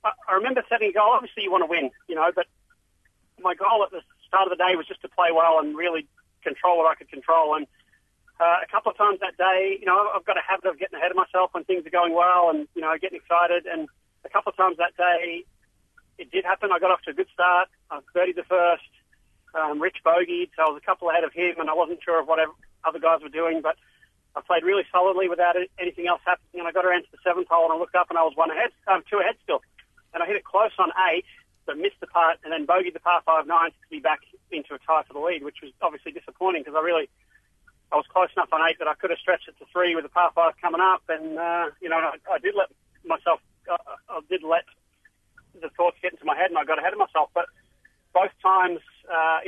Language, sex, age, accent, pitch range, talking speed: English, male, 40-59, Australian, 165-185 Hz, 265 wpm